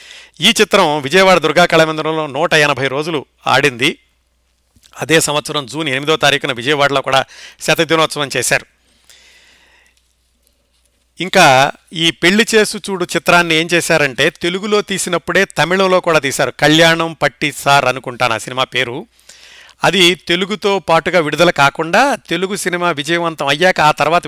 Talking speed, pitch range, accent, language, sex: 120 wpm, 145-185 Hz, native, Telugu, male